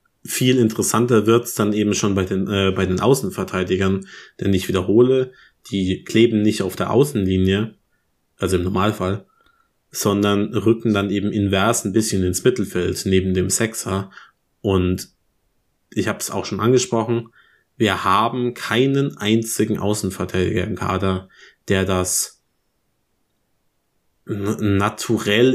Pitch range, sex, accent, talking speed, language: 95-120 Hz, male, German, 130 wpm, German